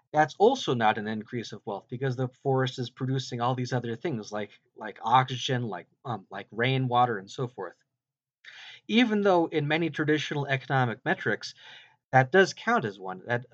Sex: male